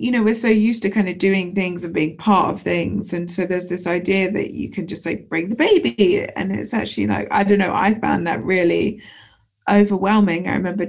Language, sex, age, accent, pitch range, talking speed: English, female, 20-39, British, 175-205 Hz, 230 wpm